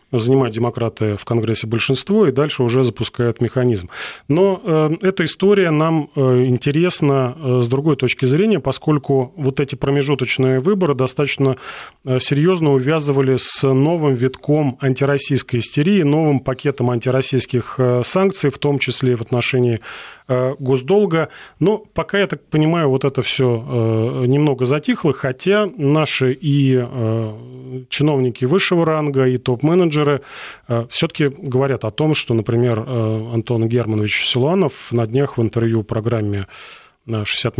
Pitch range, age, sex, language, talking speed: 120-145 Hz, 30-49, male, Russian, 120 wpm